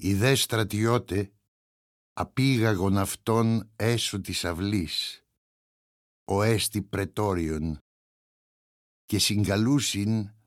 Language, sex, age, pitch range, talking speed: Greek, male, 60-79, 90-115 Hz, 75 wpm